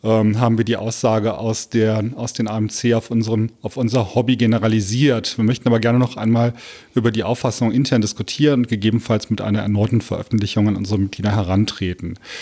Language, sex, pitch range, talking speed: German, male, 110-125 Hz, 175 wpm